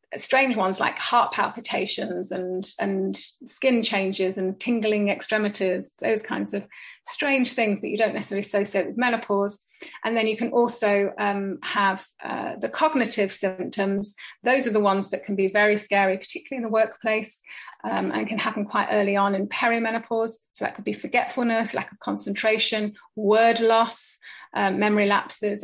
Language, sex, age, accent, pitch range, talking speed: English, female, 30-49, British, 195-225 Hz, 165 wpm